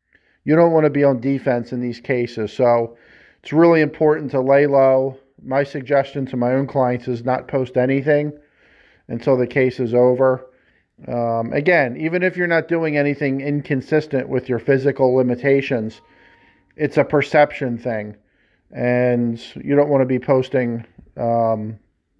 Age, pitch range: 40-59, 120-140 Hz